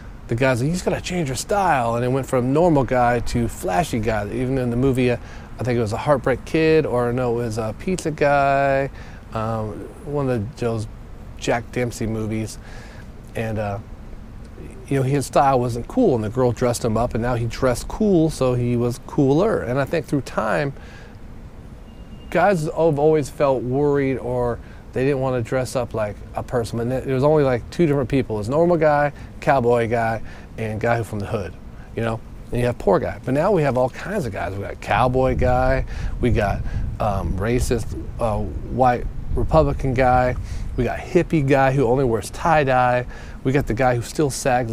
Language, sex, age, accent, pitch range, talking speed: English, male, 40-59, American, 115-135 Hz, 195 wpm